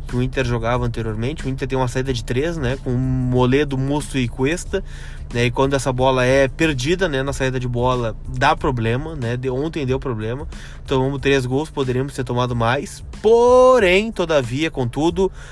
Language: Portuguese